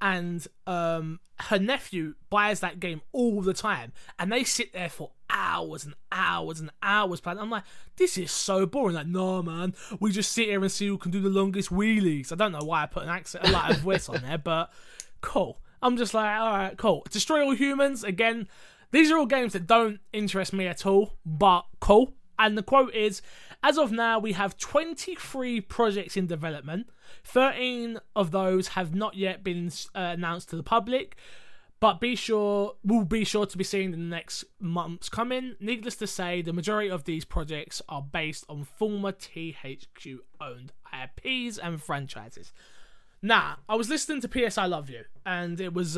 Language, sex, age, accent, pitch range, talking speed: English, male, 20-39, British, 170-220 Hz, 190 wpm